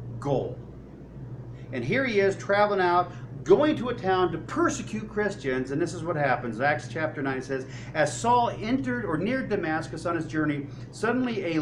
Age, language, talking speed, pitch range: 40-59, English, 175 wpm, 125-185 Hz